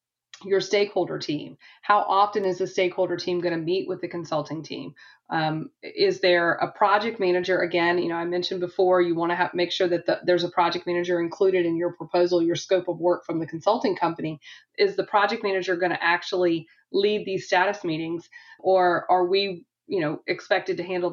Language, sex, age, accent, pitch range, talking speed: English, female, 30-49, American, 170-200 Hz, 195 wpm